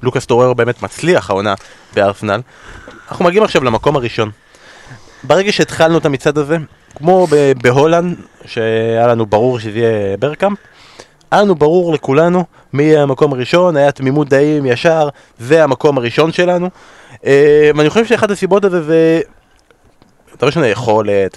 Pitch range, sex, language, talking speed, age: 125-175 Hz, male, Hebrew, 135 wpm, 20-39